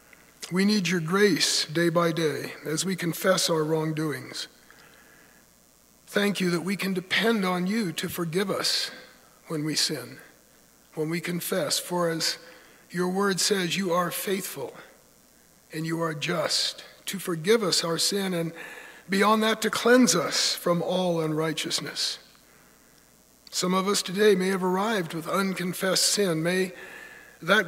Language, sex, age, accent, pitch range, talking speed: English, male, 60-79, American, 165-205 Hz, 145 wpm